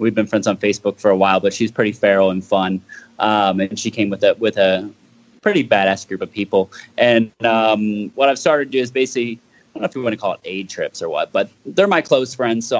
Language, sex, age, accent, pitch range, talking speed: English, male, 20-39, American, 100-130 Hz, 260 wpm